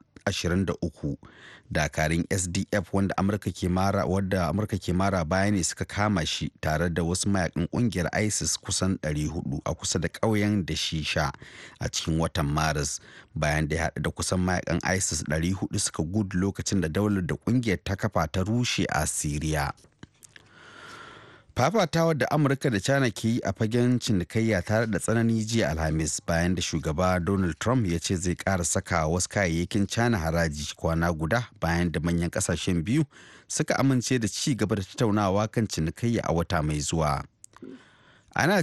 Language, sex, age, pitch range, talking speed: English, male, 30-49, 85-110 Hz, 150 wpm